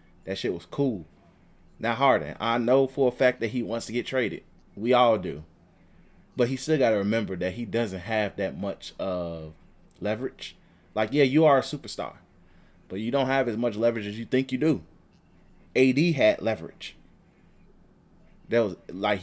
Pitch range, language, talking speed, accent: 105-135 Hz, English, 185 wpm, American